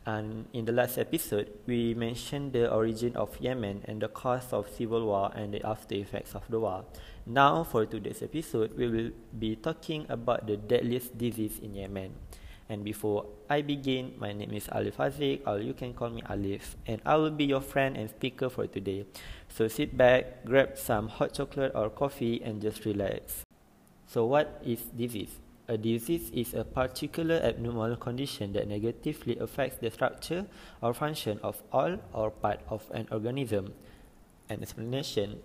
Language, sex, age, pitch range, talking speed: English, male, 20-39, 105-130 Hz, 175 wpm